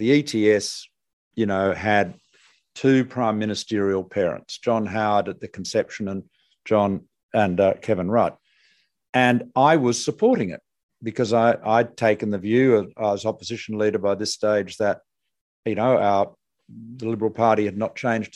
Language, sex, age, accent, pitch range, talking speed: English, male, 50-69, Australian, 100-115 Hz, 145 wpm